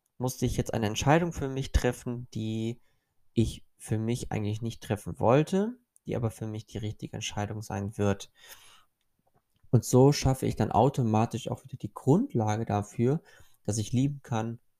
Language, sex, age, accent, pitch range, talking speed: German, male, 20-39, German, 110-135 Hz, 160 wpm